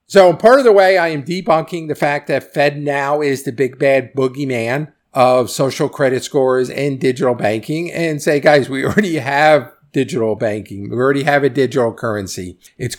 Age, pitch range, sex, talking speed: 50-69, 115-145 Hz, male, 180 wpm